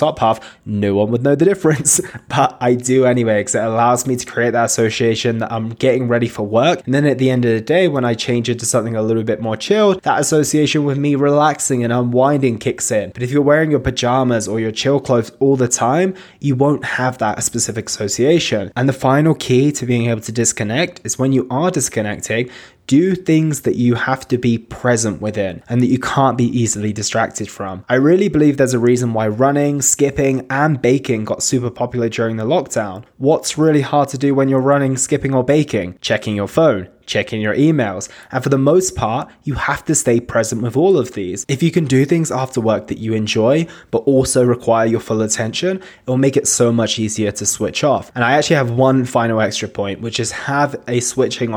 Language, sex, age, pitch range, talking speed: English, male, 20-39, 115-140 Hz, 220 wpm